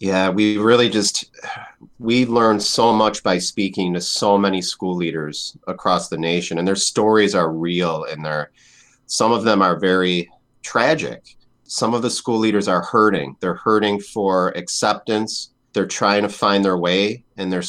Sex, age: male, 40-59